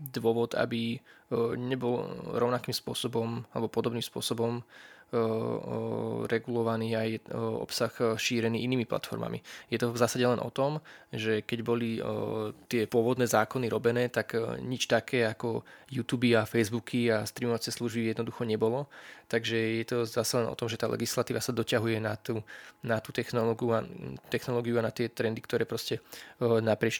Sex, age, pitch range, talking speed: male, 20-39, 110-120 Hz, 145 wpm